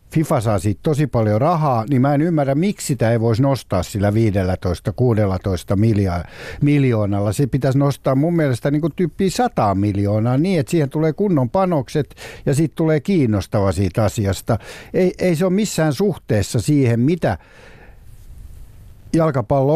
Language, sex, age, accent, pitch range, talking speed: Finnish, male, 60-79, native, 105-150 Hz, 145 wpm